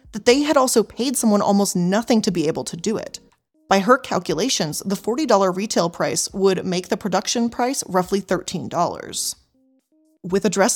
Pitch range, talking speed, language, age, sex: 185-245 Hz, 175 wpm, English, 20-39, female